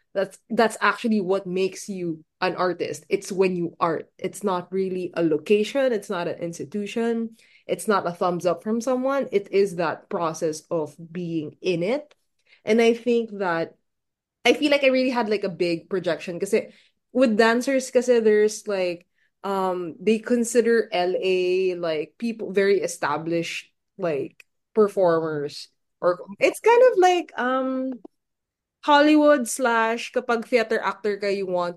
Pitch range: 175-240 Hz